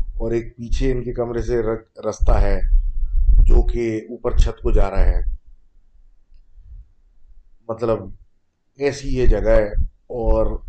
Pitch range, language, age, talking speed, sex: 80-110 Hz, Urdu, 30-49, 130 wpm, male